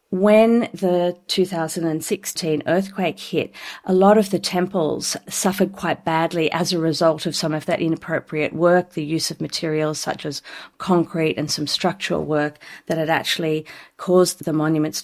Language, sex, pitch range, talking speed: English, female, 150-180 Hz, 155 wpm